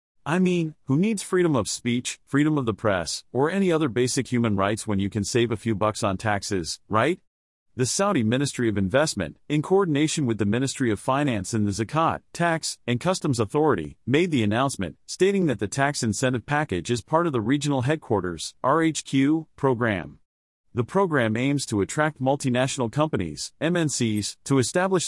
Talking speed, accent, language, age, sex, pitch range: 175 wpm, American, English, 40-59, male, 110-150 Hz